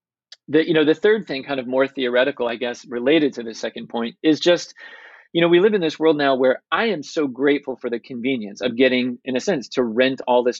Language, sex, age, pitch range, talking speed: English, male, 30-49, 125-145 Hz, 245 wpm